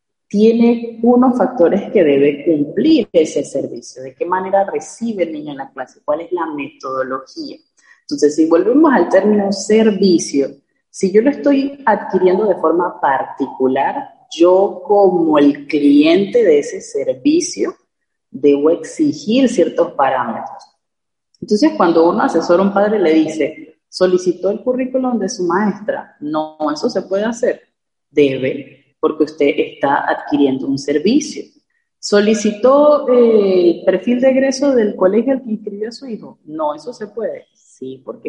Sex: female